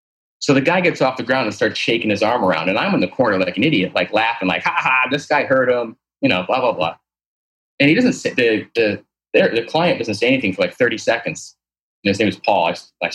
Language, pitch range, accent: English, 100-150 Hz, American